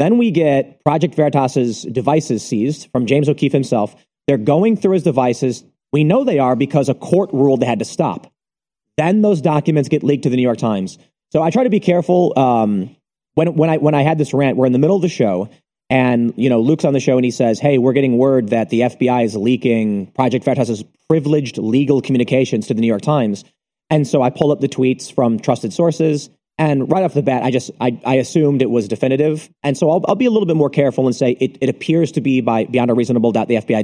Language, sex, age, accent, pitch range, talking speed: English, male, 30-49, American, 125-155 Hz, 240 wpm